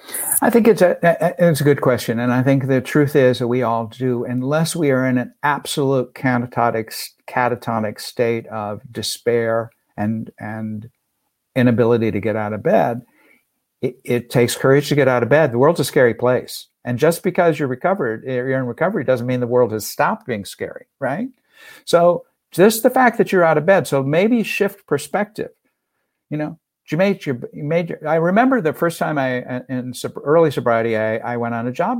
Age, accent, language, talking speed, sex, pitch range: 60-79, American, English, 190 wpm, male, 120-175 Hz